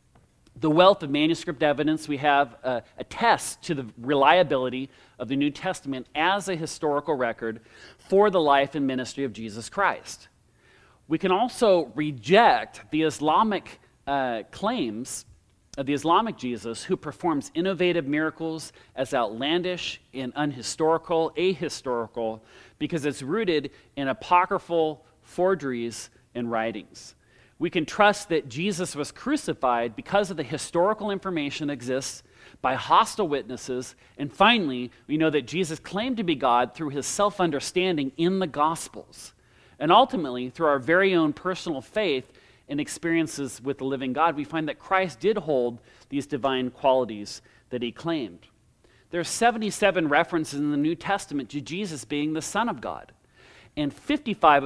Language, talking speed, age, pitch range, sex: English, 145 wpm, 40-59, 130-170 Hz, male